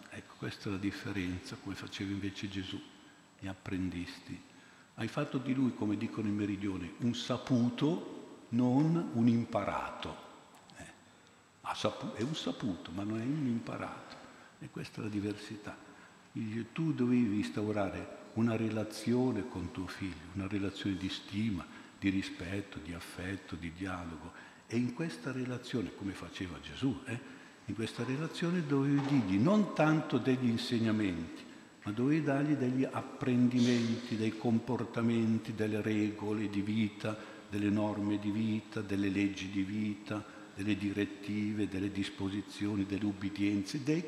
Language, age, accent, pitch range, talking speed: Italian, 60-79, native, 100-125 Hz, 140 wpm